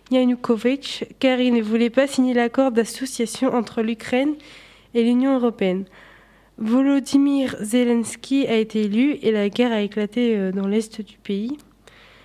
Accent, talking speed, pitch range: French, 135 wpm, 225-260 Hz